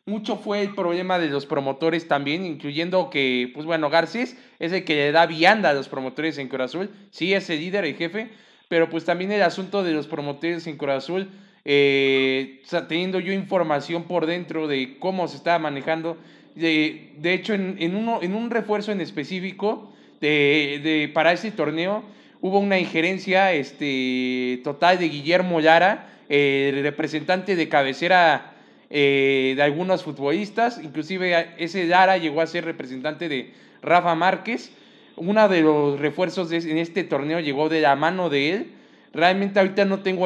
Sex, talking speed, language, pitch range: male, 175 wpm, Spanish, 150-190 Hz